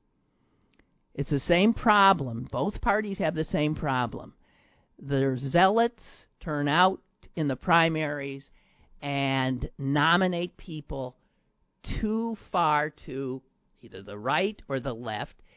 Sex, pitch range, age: male, 125-160 Hz, 50-69